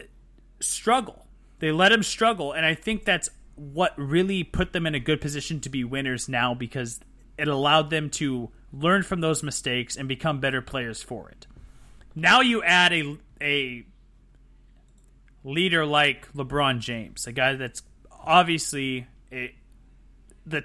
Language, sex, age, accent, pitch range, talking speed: English, male, 30-49, American, 125-170 Hz, 150 wpm